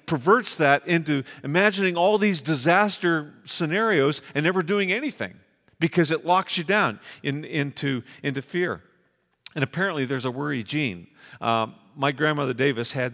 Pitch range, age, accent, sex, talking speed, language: 130-170 Hz, 50-69, American, male, 145 wpm, English